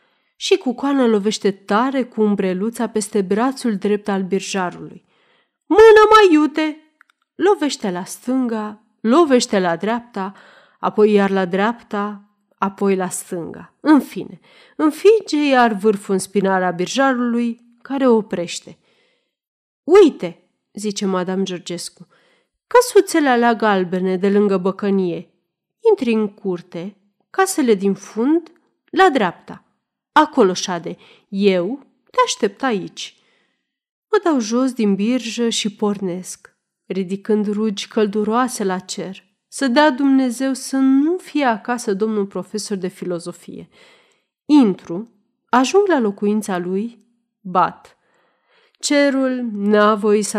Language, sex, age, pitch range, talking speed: Romanian, female, 30-49, 195-270 Hz, 115 wpm